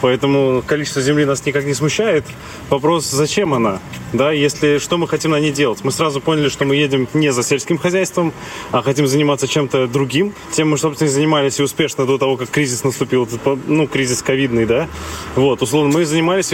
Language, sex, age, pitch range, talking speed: Russian, male, 20-39, 135-160 Hz, 190 wpm